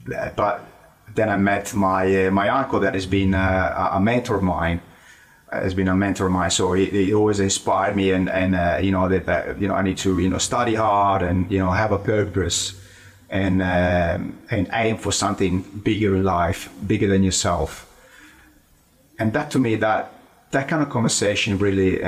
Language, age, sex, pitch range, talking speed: English, 30-49, male, 90-100 Hz, 195 wpm